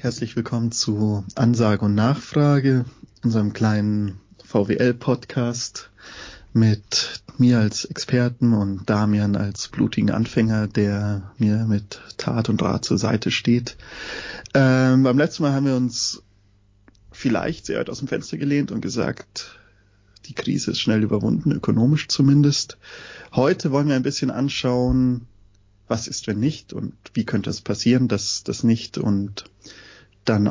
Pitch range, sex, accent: 105-125 Hz, male, German